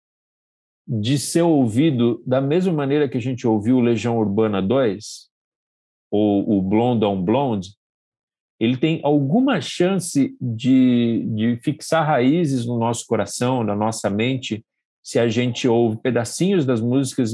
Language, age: Portuguese, 50-69